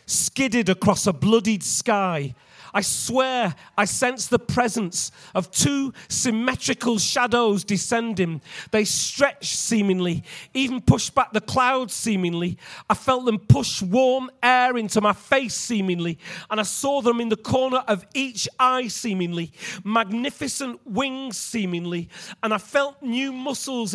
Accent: British